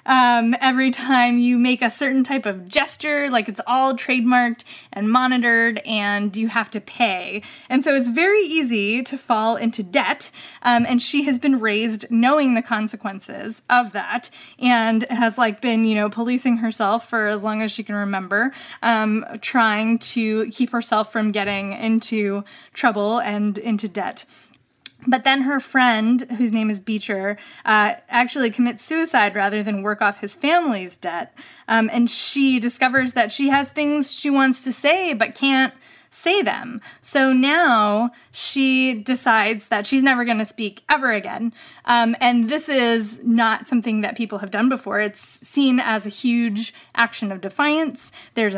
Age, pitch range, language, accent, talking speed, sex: 20-39, 220-270 Hz, English, American, 165 wpm, female